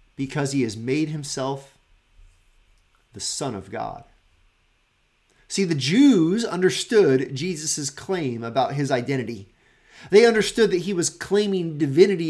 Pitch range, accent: 110-170 Hz, American